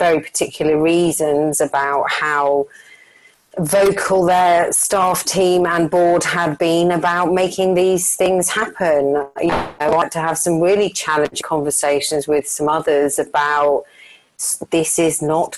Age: 40-59